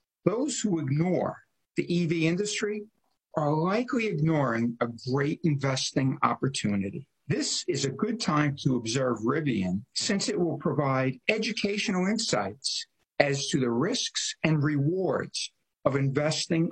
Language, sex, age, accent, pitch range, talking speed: English, male, 60-79, American, 130-180 Hz, 125 wpm